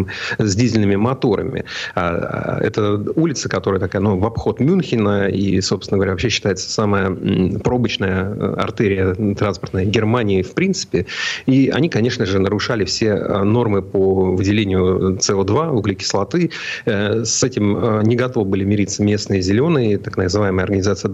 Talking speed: 130 wpm